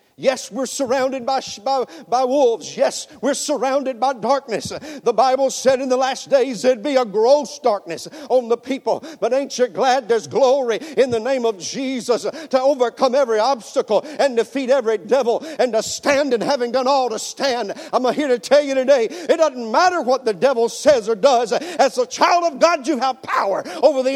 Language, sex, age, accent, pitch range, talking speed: English, male, 50-69, American, 210-295 Hz, 200 wpm